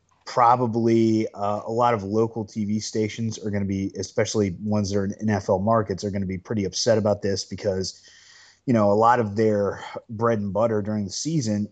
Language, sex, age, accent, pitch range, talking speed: English, male, 30-49, American, 100-115 Hz, 205 wpm